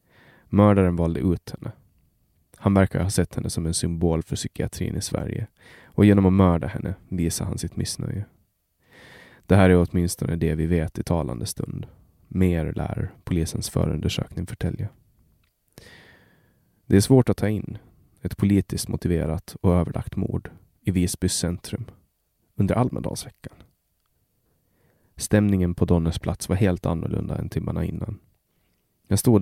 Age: 30-49